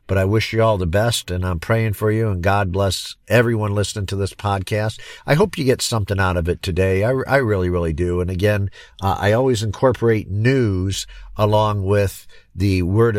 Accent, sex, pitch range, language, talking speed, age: American, male, 90-110 Hz, English, 205 wpm, 50-69